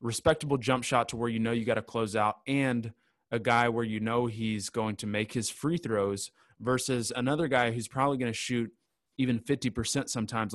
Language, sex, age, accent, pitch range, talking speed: English, male, 20-39, American, 110-130 Hz, 205 wpm